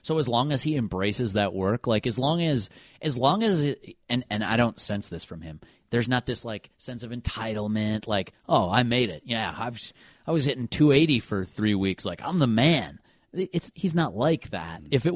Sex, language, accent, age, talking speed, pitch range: male, English, American, 30-49, 220 wpm, 100-130 Hz